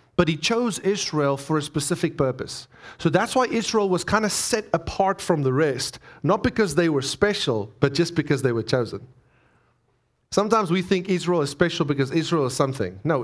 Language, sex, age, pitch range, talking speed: English, male, 30-49, 125-170 Hz, 190 wpm